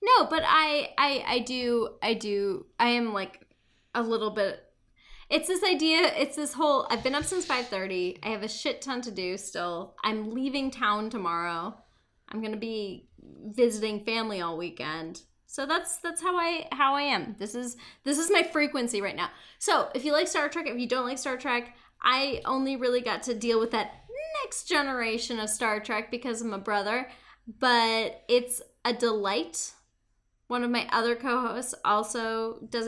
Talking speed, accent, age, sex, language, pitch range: 185 wpm, American, 10-29, female, English, 220-295 Hz